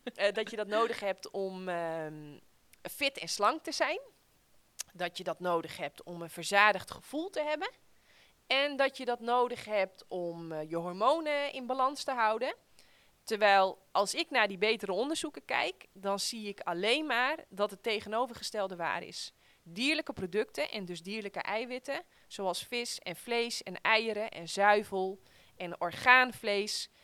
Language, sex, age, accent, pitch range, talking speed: Dutch, female, 20-39, Dutch, 185-240 Hz, 160 wpm